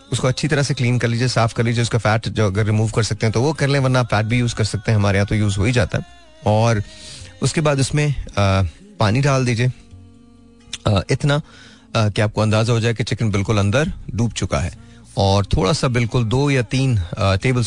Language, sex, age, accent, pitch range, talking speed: Hindi, male, 30-49, native, 105-135 Hz, 230 wpm